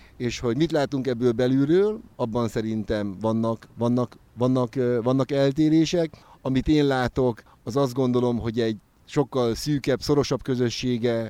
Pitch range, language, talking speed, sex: 120-145 Hz, Hungarian, 135 wpm, male